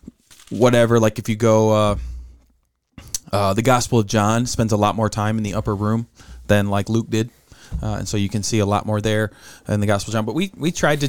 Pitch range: 105-120 Hz